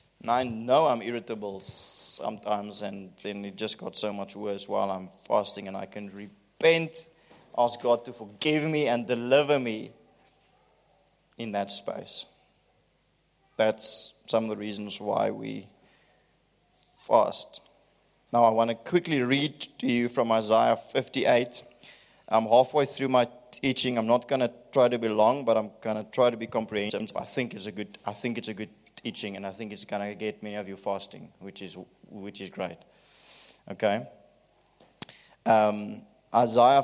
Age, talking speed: 20-39, 165 wpm